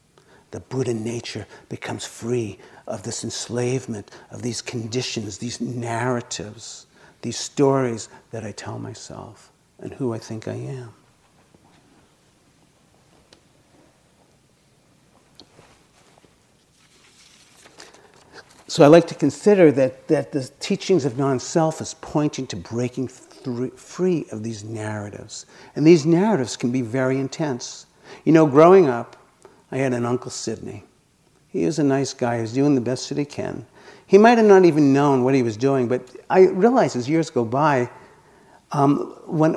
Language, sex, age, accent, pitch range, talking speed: English, male, 60-79, American, 125-165 Hz, 140 wpm